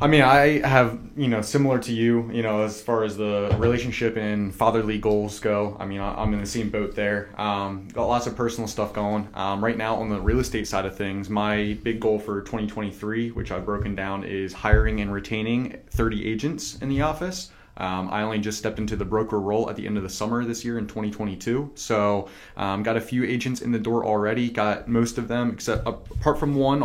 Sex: male